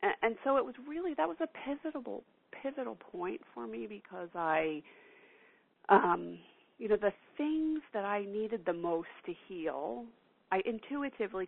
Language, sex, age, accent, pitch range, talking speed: English, female, 40-59, American, 170-255 Hz, 150 wpm